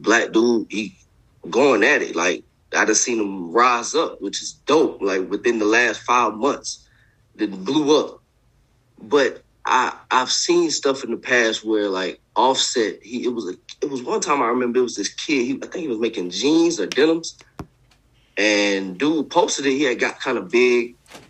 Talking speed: 195 wpm